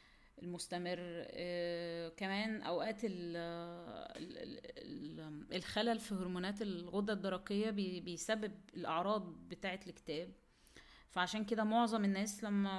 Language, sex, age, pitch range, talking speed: Arabic, female, 20-39, 175-215 Hz, 80 wpm